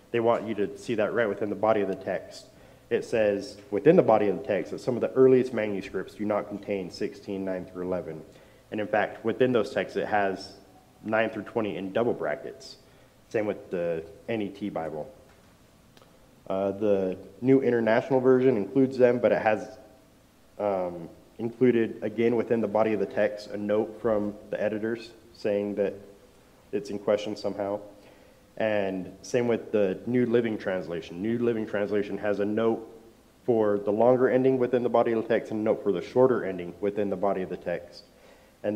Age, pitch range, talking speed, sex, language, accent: 30-49, 100-115 Hz, 185 wpm, male, English, American